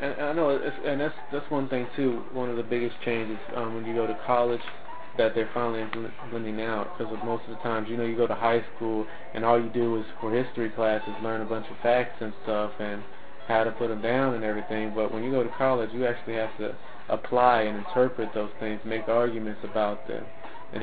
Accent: American